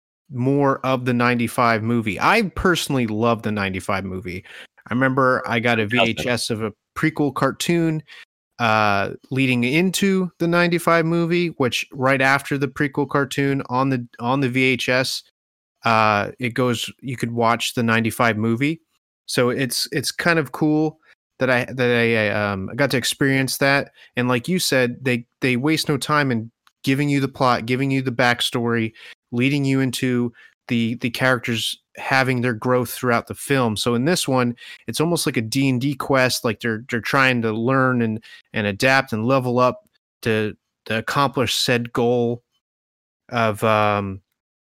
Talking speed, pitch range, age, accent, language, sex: 170 wpm, 115-135 Hz, 30-49, American, English, male